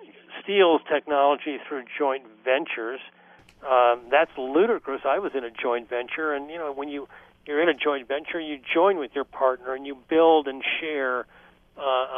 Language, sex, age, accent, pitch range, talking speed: English, male, 60-79, American, 120-145 Hz, 170 wpm